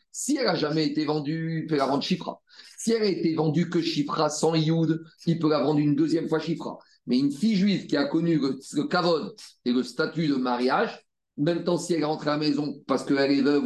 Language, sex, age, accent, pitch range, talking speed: French, male, 40-59, French, 145-195 Hz, 245 wpm